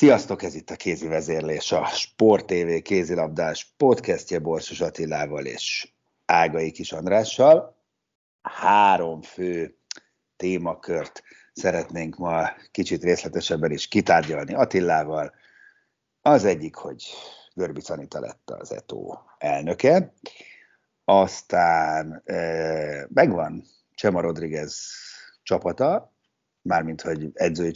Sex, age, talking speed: male, 60-79, 95 wpm